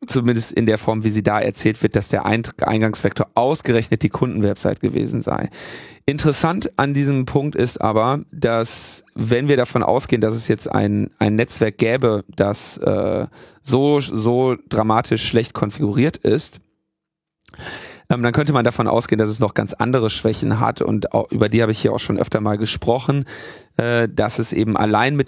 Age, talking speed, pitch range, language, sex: 30-49, 170 wpm, 105-130 Hz, German, male